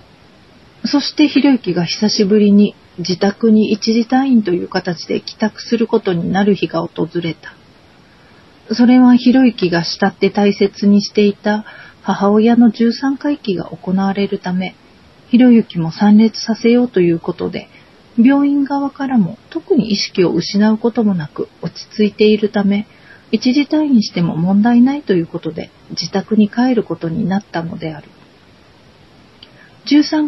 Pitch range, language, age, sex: 190-235 Hz, Japanese, 40-59, female